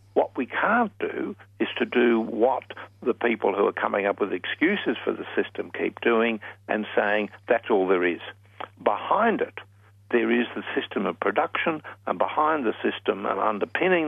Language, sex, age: English, male, 60-79